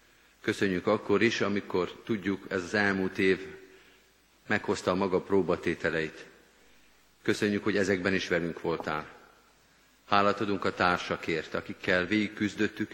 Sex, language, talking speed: male, Hungarian, 120 wpm